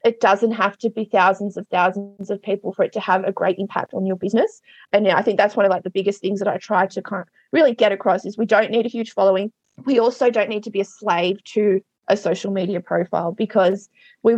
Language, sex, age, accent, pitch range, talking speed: English, female, 20-39, Australian, 200-235 Hz, 240 wpm